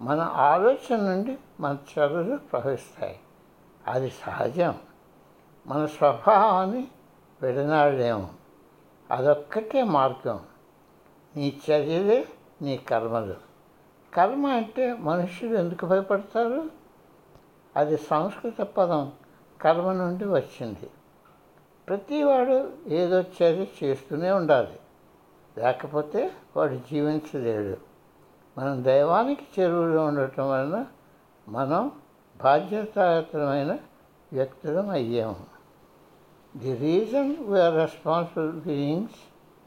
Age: 60-79